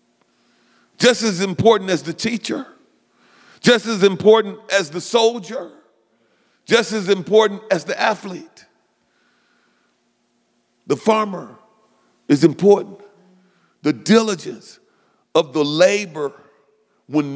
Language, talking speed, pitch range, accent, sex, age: English, 95 wpm, 185-235 Hz, American, male, 50-69